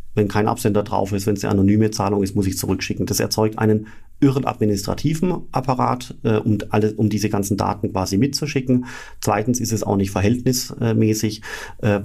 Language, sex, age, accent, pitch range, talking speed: German, male, 40-59, German, 100-115 Hz, 180 wpm